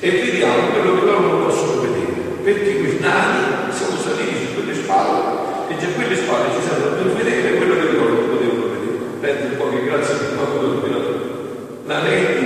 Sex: male